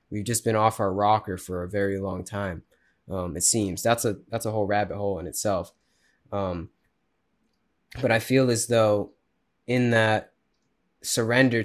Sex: male